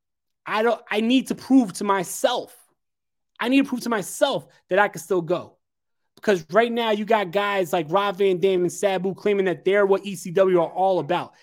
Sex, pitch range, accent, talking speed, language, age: male, 170-215 Hz, American, 205 wpm, English, 20-39